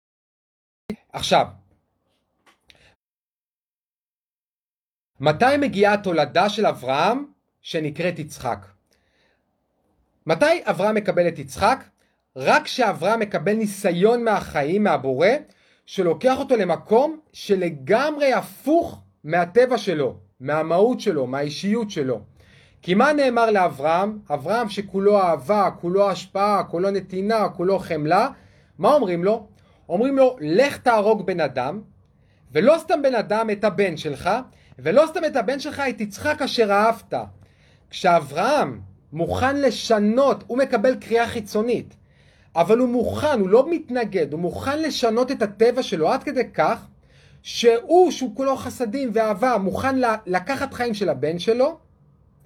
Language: Hebrew